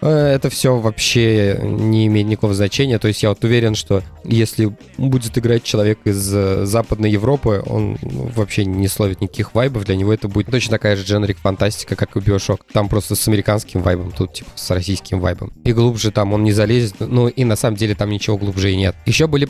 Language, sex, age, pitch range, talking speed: Russian, male, 20-39, 105-130 Hz, 205 wpm